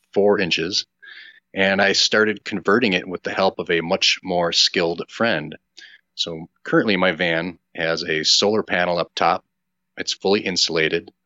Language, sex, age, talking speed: English, male, 30-49, 155 wpm